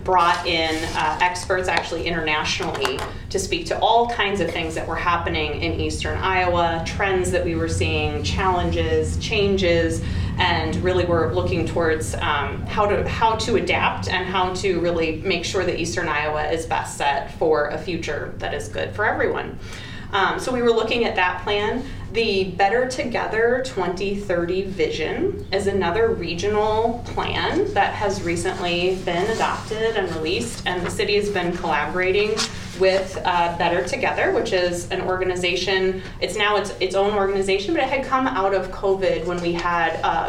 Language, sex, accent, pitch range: English, female, American, 165-200 Hz